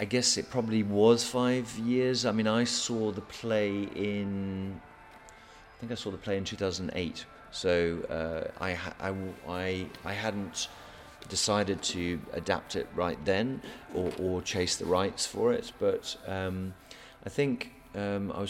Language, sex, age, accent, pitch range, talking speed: English, male, 30-49, British, 85-100 Hz, 150 wpm